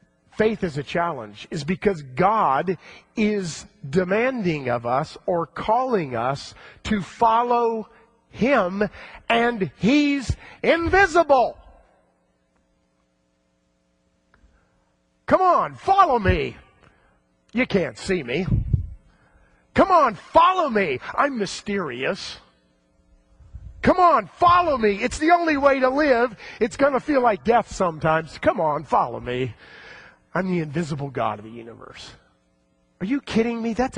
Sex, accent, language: male, American, English